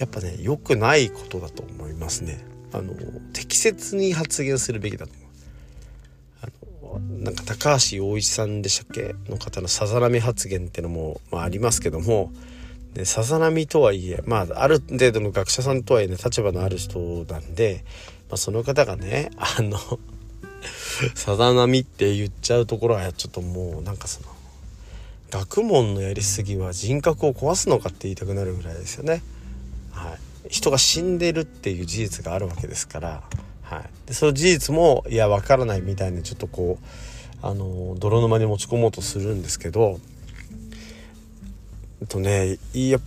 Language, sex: Japanese, male